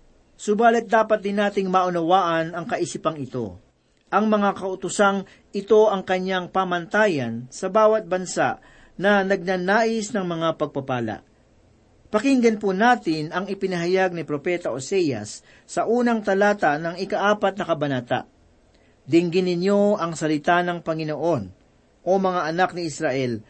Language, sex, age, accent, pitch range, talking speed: Filipino, male, 40-59, native, 150-200 Hz, 125 wpm